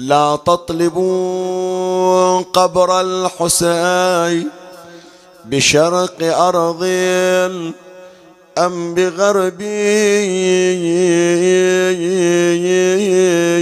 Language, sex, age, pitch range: Arabic, male, 40-59, 170-185 Hz